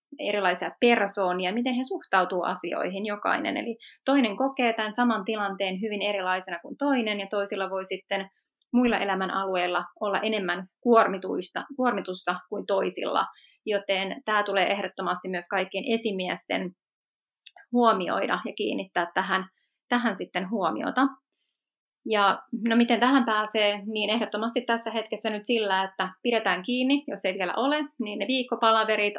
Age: 30-49